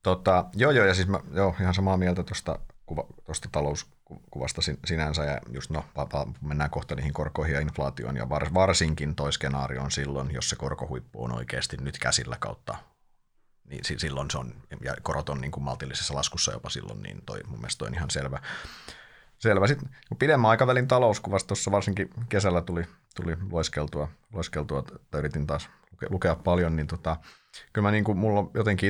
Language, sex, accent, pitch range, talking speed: Finnish, male, native, 70-85 Hz, 165 wpm